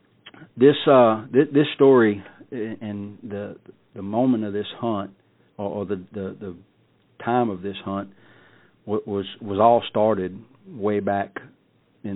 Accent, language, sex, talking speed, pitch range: American, English, male, 135 wpm, 95-115 Hz